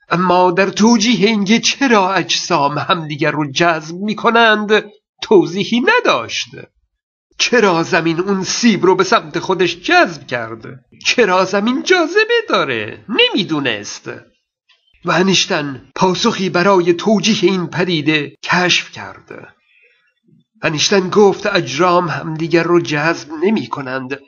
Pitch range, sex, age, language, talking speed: 170-215 Hz, male, 50-69, Persian, 105 wpm